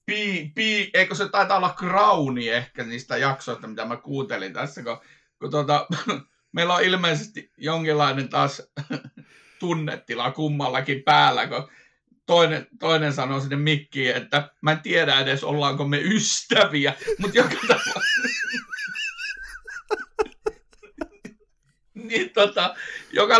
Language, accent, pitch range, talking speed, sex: Finnish, native, 130-170 Hz, 105 wpm, male